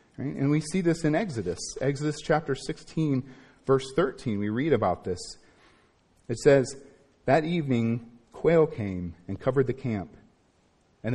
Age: 40-59